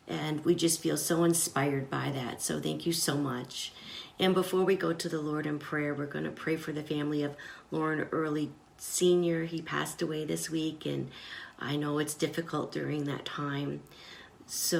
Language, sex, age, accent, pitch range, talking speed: English, female, 50-69, American, 140-175 Hz, 185 wpm